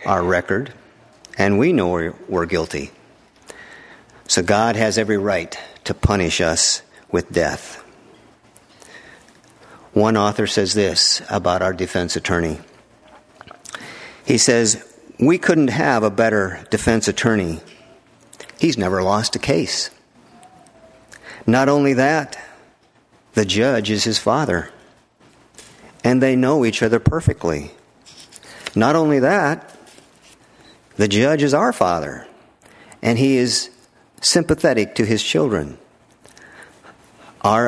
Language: English